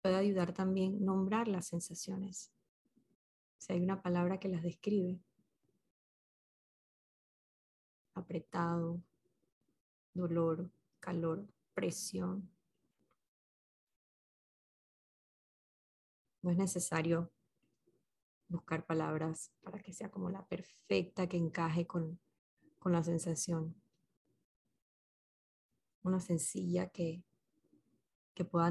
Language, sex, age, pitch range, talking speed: Spanish, female, 20-39, 170-190 Hz, 80 wpm